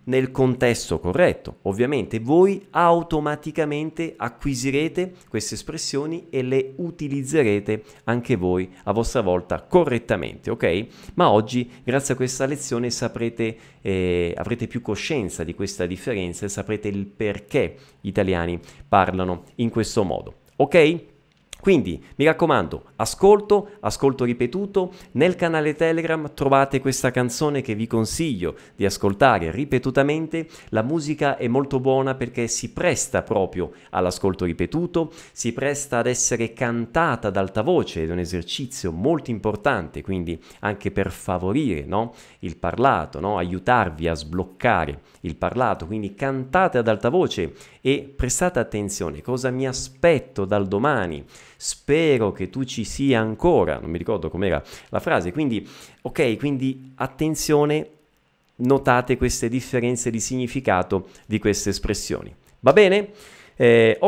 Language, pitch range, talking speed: Italian, 105-145 Hz, 130 wpm